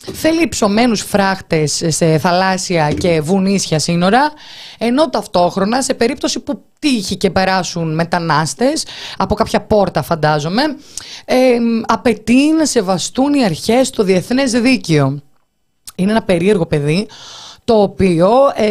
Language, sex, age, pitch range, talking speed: Greek, female, 20-39, 165-255 Hz, 115 wpm